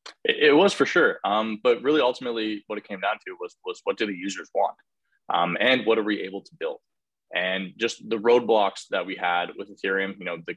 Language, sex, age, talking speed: English, male, 20-39, 225 wpm